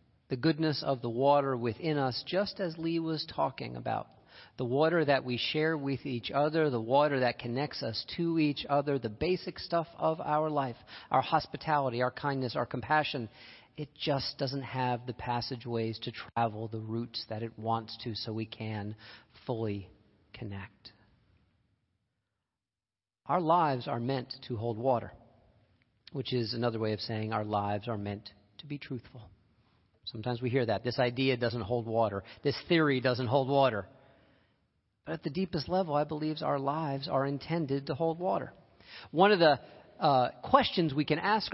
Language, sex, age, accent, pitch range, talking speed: English, male, 40-59, American, 115-150 Hz, 170 wpm